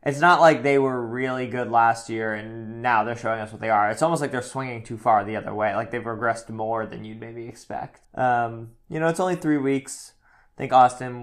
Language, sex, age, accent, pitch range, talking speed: English, male, 20-39, American, 110-125 Hz, 240 wpm